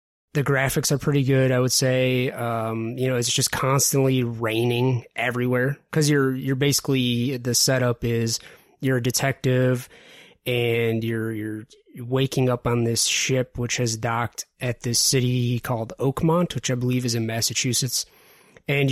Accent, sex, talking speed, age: American, male, 155 wpm, 20-39